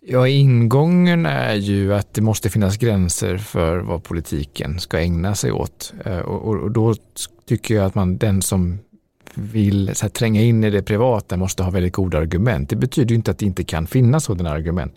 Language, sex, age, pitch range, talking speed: Swedish, male, 50-69, 90-115 Hz, 200 wpm